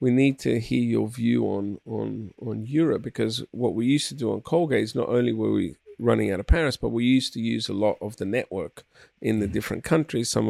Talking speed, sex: 240 wpm, male